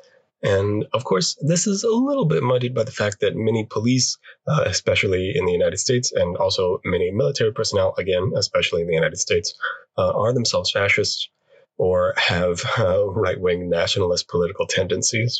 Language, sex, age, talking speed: English, male, 20-39, 170 wpm